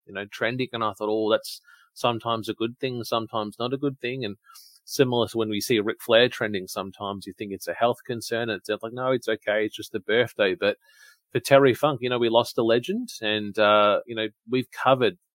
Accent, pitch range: Australian, 110-130 Hz